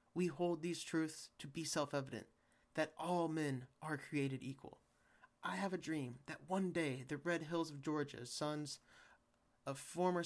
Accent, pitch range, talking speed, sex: American, 150-185 Hz, 165 wpm, male